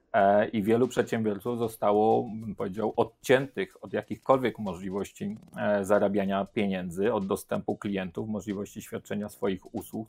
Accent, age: native, 40-59